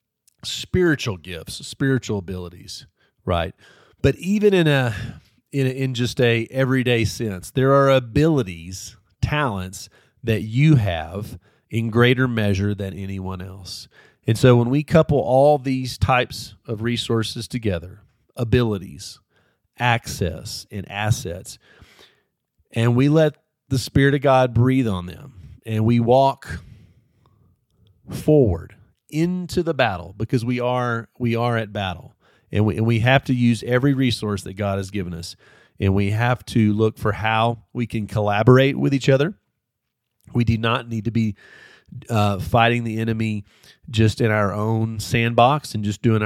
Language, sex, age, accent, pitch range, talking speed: English, male, 40-59, American, 105-130 Hz, 145 wpm